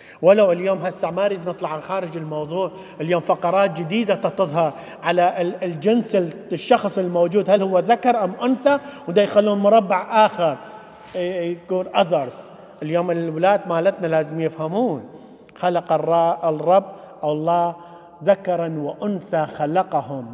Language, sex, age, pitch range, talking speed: English, male, 50-69, 160-195 Hz, 110 wpm